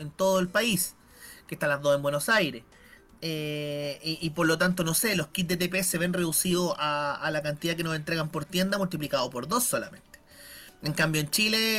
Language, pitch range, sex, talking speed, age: Spanish, 165-200 Hz, male, 220 wpm, 30-49